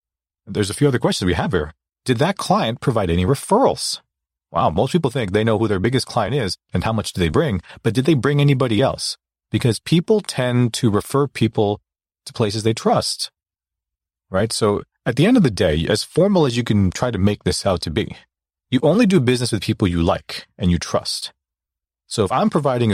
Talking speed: 215 wpm